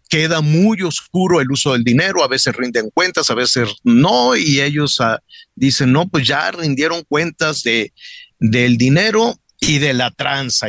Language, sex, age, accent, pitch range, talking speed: Spanish, male, 50-69, Mexican, 130-175 Hz, 165 wpm